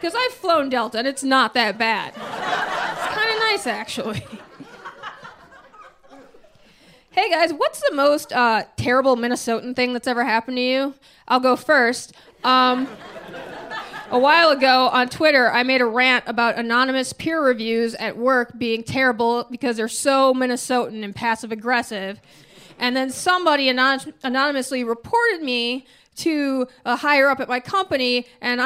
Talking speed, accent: 145 wpm, American